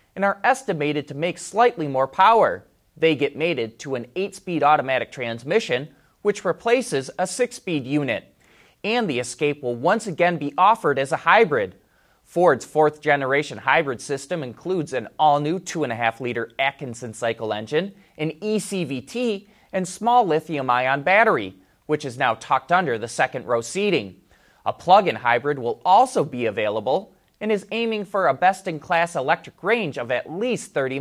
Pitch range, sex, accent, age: 130-190 Hz, male, American, 30-49